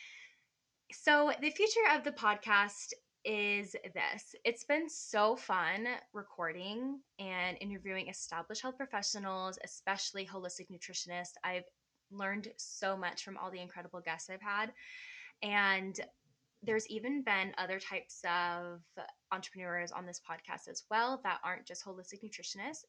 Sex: female